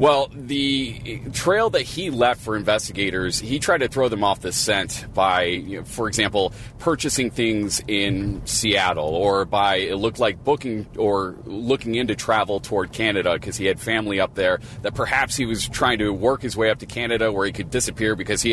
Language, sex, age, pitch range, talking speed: English, male, 30-49, 100-120 Hz, 200 wpm